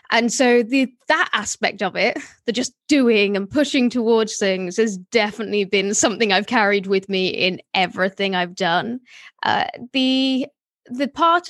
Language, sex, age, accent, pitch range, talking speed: English, female, 20-39, British, 195-245 Hz, 155 wpm